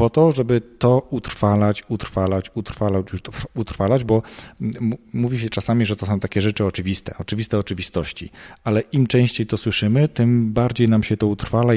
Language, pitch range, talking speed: Polish, 100-115 Hz, 165 wpm